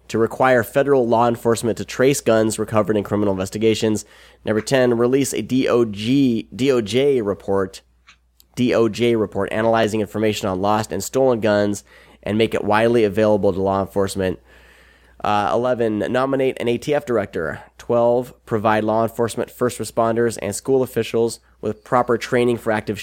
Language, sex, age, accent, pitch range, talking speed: English, male, 30-49, American, 105-120 Hz, 140 wpm